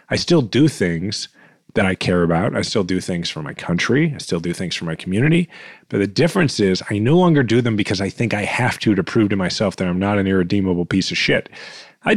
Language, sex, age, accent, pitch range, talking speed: English, male, 30-49, American, 100-135 Hz, 245 wpm